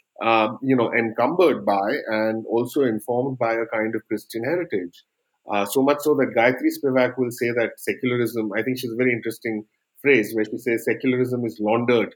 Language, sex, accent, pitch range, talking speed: English, male, Indian, 115-150 Hz, 190 wpm